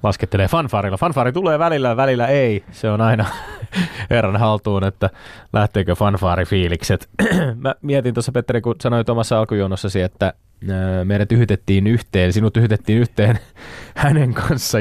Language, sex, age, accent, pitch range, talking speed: Finnish, male, 20-39, native, 90-120 Hz, 135 wpm